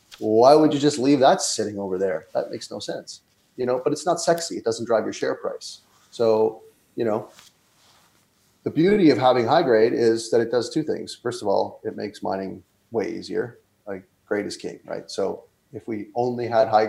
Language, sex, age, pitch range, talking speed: English, male, 30-49, 105-125 Hz, 210 wpm